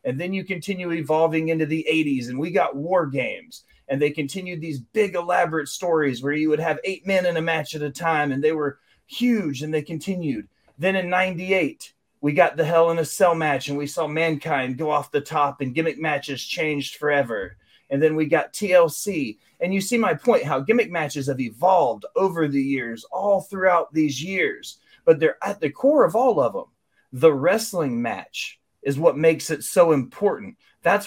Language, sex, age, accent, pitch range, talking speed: English, male, 30-49, American, 150-200 Hz, 200 wpm